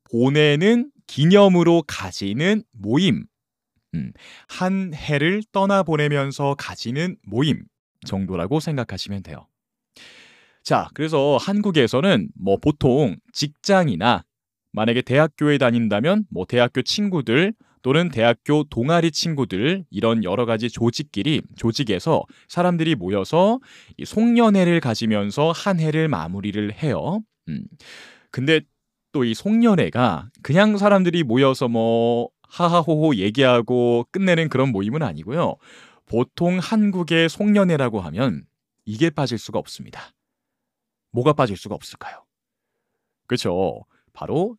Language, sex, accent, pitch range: Korean, male, native, 115-180 Hz